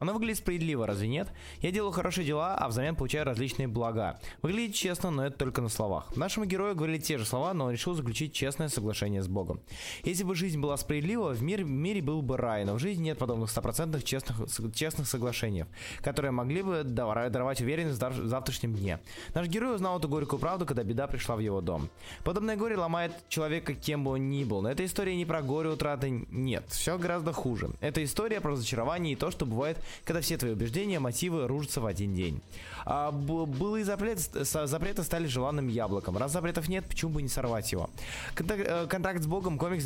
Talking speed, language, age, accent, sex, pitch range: 200 wpm, Russian, 20-39, native, male, 120-165 Hz